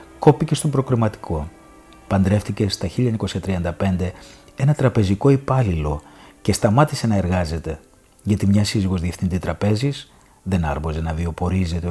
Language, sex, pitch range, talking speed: Greek, male, 90-120 Hz, 110 wpm